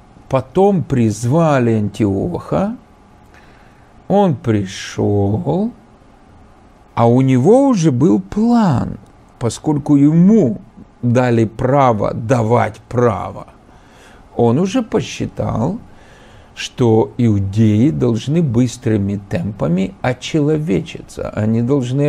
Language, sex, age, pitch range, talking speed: Russian, male, 50-69, 115-165 Hz, 75 wpm